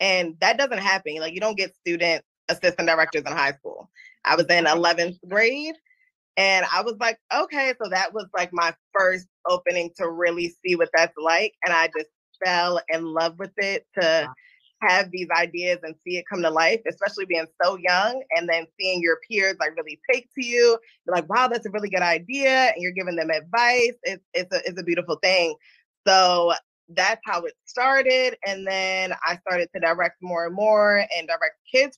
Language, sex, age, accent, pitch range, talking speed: English, female, 20-39, American, 170-225 Hz, 200 wpm